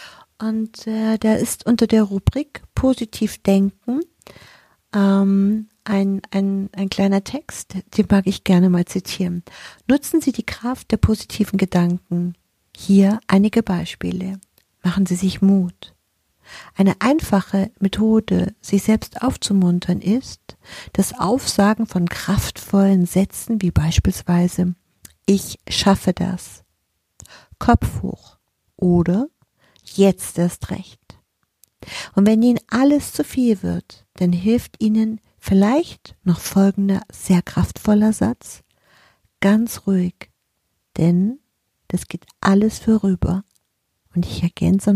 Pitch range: 175-220 Hz